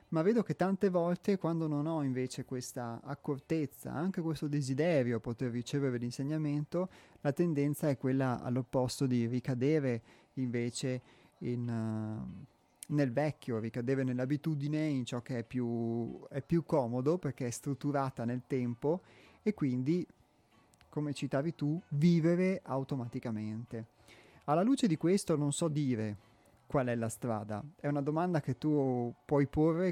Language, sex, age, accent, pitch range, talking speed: Italian, male, 30-49, native, 120-145 Hz, 135 wpm